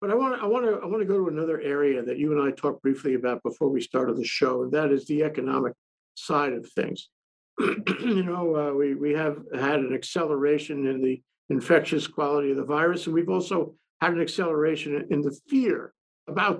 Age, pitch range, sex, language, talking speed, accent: 60-79, 145-190 Hz, male, English, 215 wpm, American